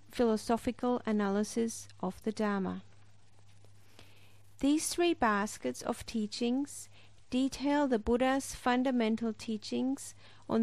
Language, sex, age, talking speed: English, female, 50-69, 90 wpm